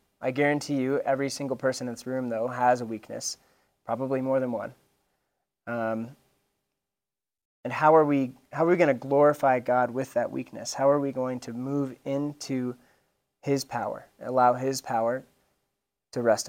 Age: 20-39